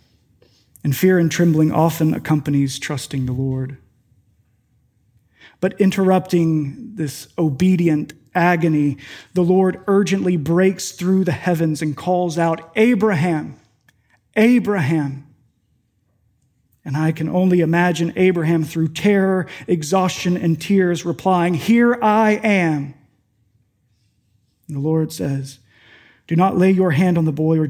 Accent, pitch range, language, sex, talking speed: American, 135-180 Hz, English, male, 115 wpm